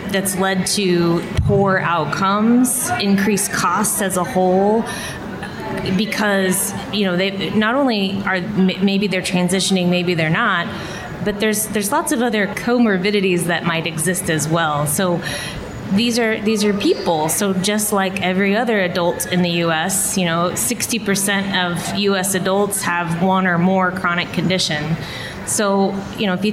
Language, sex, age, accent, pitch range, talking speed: English, female, 20-39, American, 175-200 Hz, 155 wpm